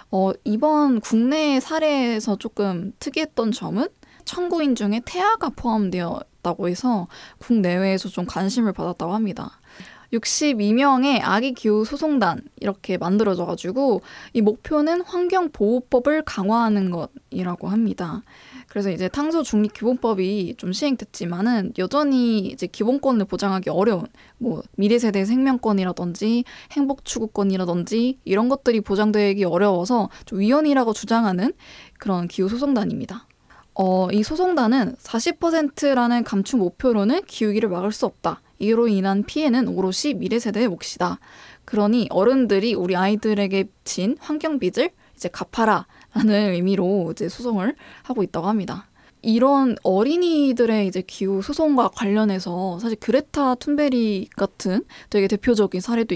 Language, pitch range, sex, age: Korean, 195-265 Hz, female, 20-39